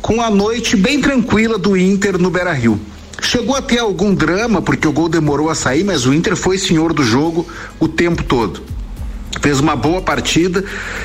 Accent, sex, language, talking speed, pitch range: Brazilian, male, Portuguese, 185 wpm, 140-190 Hz